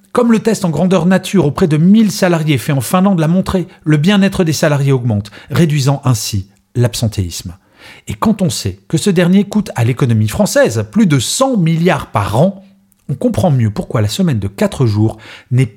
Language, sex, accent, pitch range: French, male, French, 115-180 Hz